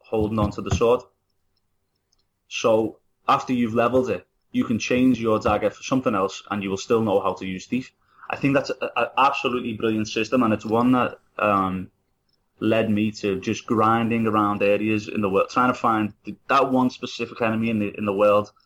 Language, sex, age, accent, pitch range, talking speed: English, male, 20-39, British, 95-115 Hz, 195 wpm